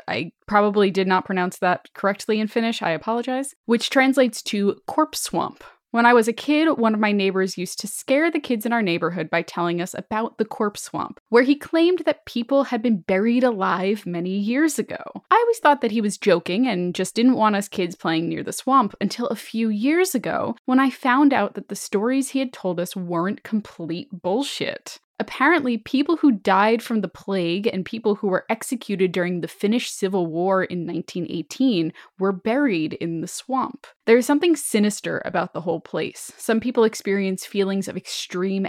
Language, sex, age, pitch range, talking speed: English, female, 10-29, 185-255 Hz, 195 wpm